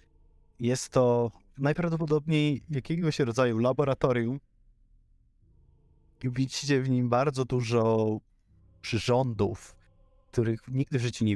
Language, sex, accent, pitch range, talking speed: Polish, male, native, 95-125 Hz, 90 wpm